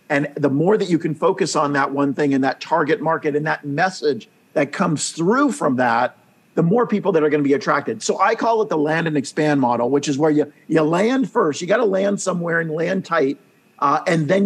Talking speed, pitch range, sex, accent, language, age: 240 wpm, 145-195 Hz, male, American, English, 50-69